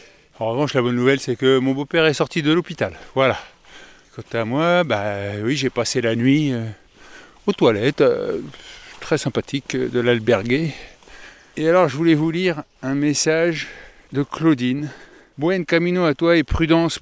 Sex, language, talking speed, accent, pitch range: male, French, 170 wpm, French, 130-160 Hz